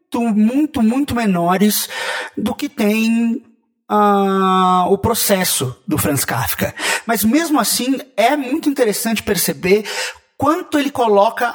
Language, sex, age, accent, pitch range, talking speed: Portuguese, male, 30-49, Brazilian, 170-240 Hz, 110 wpm